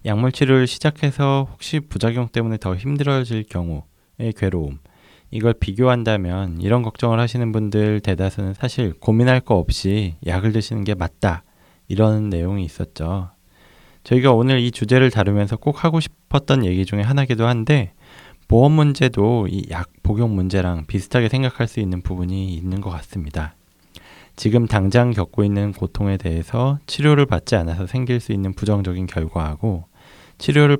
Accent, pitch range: native, 95-120 Hz